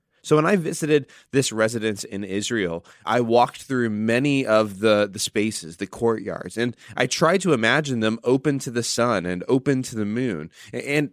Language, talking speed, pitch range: English, 185 wpm, 110-145 Hz